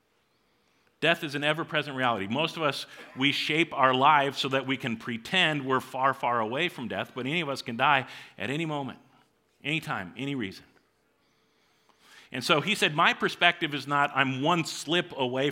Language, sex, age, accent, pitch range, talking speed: English, male, 50-69, American, 130-170 Hz, 185 wpm